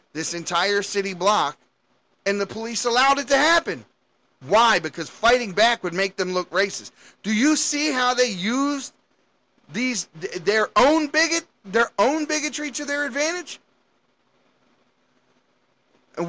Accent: American